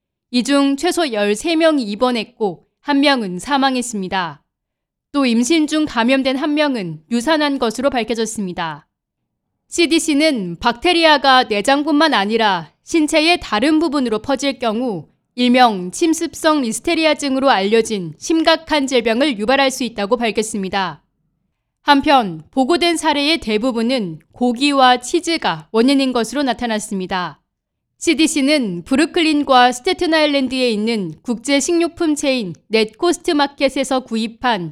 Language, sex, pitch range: Korean, female, 215-290 Hz